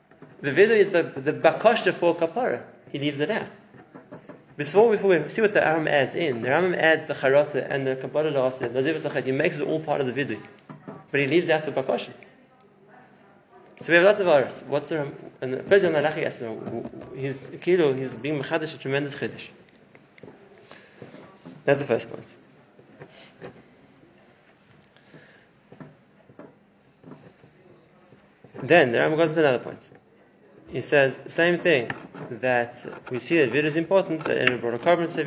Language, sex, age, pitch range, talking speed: English, male, 30-49, 125-160 Hz, 160 wpm